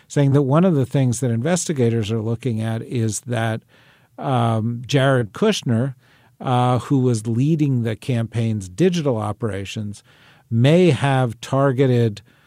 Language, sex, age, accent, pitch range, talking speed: English, male, 50-69, American, 115-140 Hz, 130 wpm